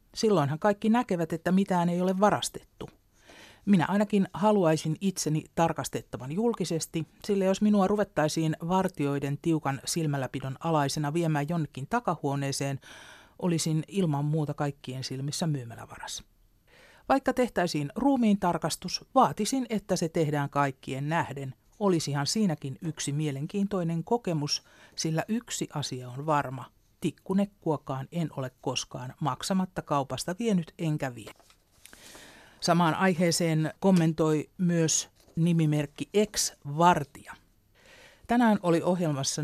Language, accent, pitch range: Finnish, native, 140-185 Hz